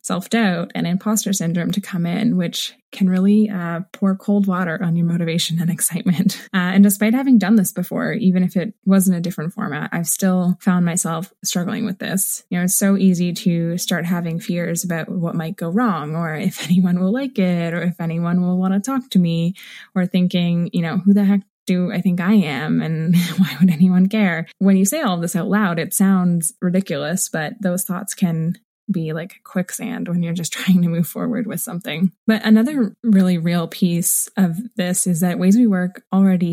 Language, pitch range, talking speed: English, 170-200 Hz, 205 wpm